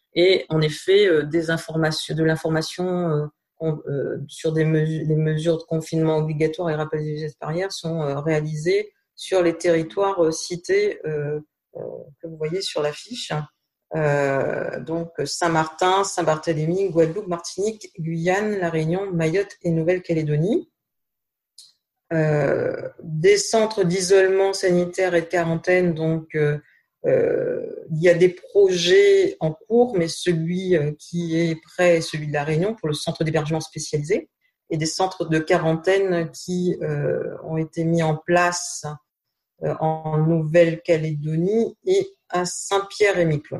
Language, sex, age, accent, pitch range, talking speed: French, female, 40-59, French, 160-185 Hz, 135 wpm